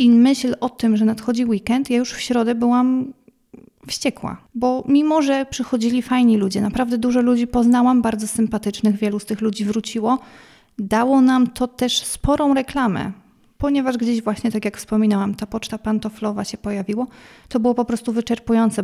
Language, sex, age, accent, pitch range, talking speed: Polish, female, 30-49, native, 210-240 Hz, 165 wpm